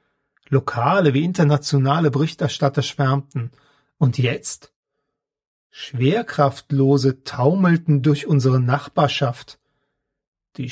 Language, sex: German, male